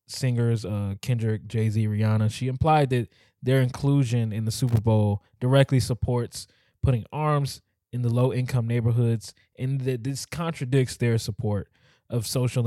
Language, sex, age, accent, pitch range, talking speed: English, male, 20-39, American, 110-130 Hz, 140 wpm